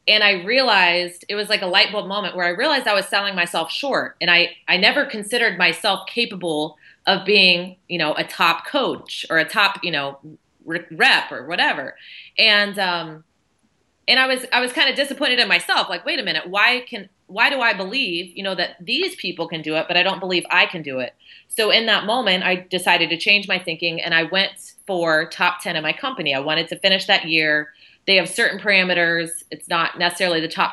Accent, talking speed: American, 220 wpm